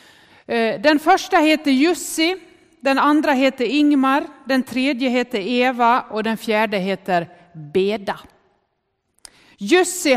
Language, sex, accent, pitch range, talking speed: Swedish, female, native, 205-275 Hz, 105 wpm